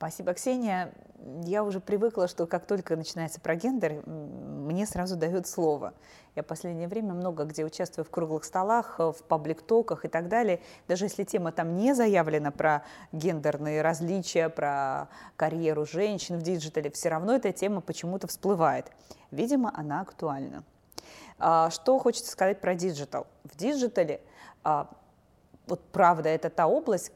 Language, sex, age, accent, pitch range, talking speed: Russian, female, 20-39, native, 160-200 Hz, 145 wpm